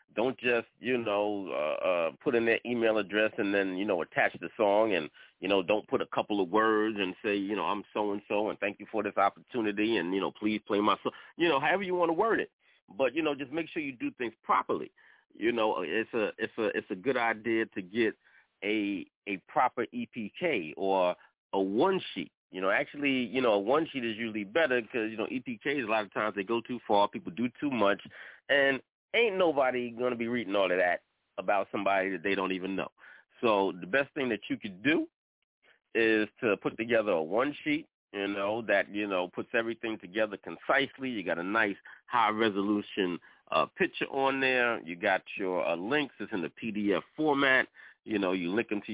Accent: American